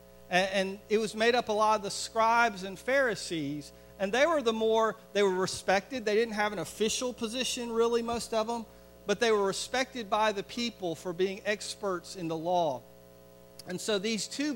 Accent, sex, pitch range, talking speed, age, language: American, male, 150-215 Hz, 195 wpm, 50-69, English